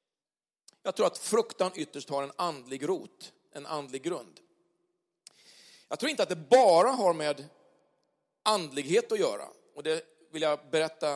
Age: 40-59